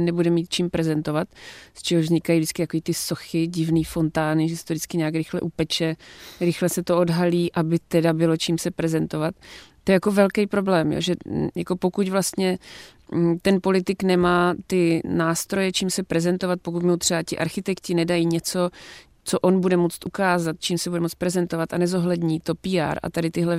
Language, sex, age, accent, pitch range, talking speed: Czech, female, 30-49, native, 165-180 Hz, 180 wpm